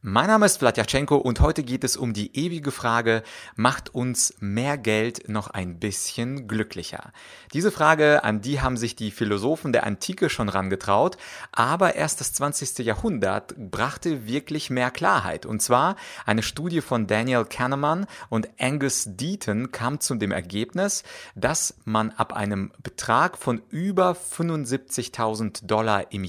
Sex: male